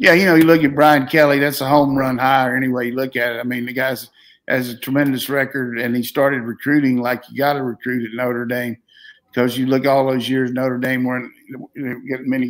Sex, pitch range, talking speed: male, 125-140 Hz, 245 wpm